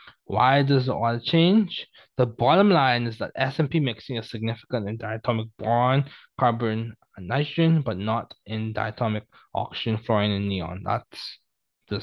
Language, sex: English, male